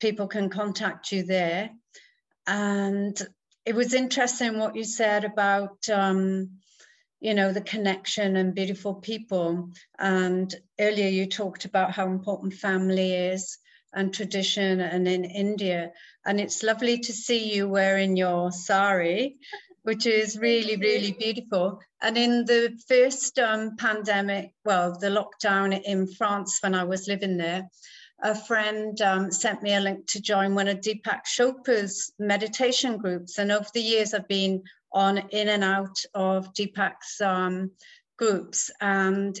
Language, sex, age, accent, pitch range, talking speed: English, female, 50-69, British, 195-225 Hz, 145 wpm